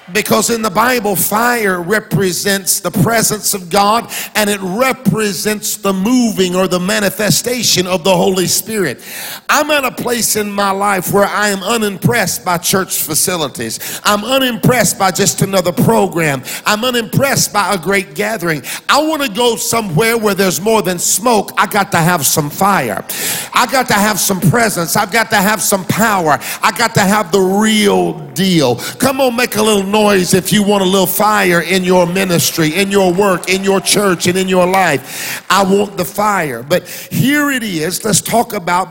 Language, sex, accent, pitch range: English, male, American, 180-215 Hz